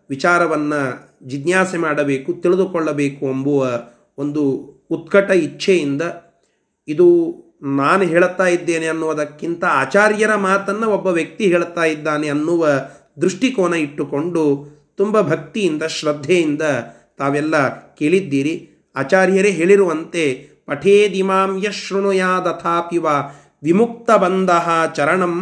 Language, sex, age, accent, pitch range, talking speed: Kannada, male, 30-49, native, 145-190 Hz, 80 wpm